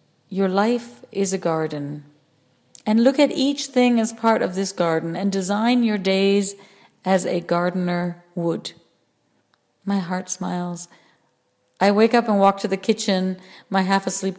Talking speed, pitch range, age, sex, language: 150 wpm, 175-195 Hz, 40-59, female, English